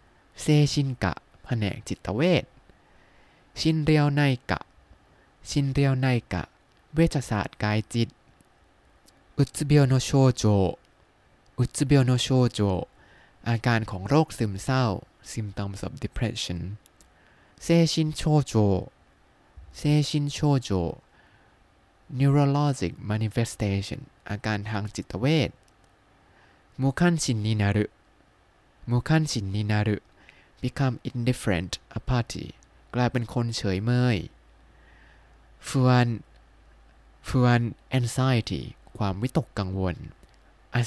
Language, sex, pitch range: Thai, male, 95-130 Hz